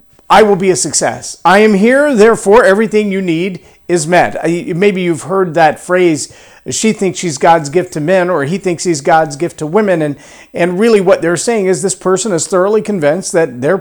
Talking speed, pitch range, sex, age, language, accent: 210 wpm, 140-195 Hz, male, 50-69, English, American